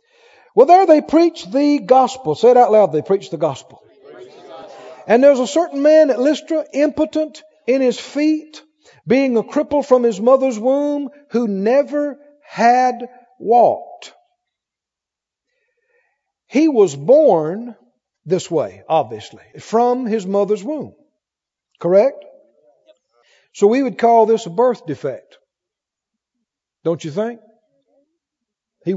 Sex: male